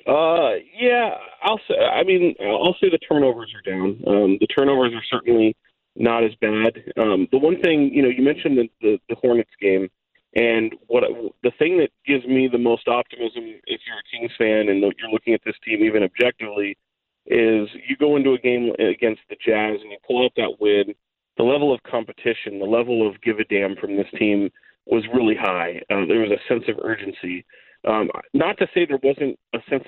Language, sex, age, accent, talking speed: English, male, 40-59, American, 205 wpm